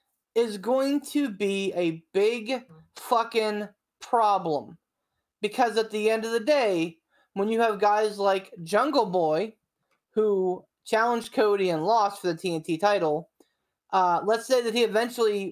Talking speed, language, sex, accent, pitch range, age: 145 wpm, English, male, American, 190-250 Hz, 20-39